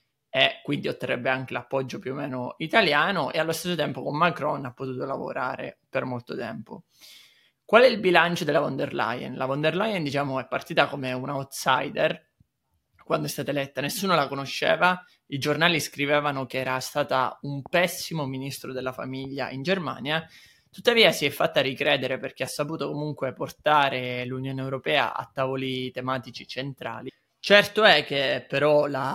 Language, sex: Italian, male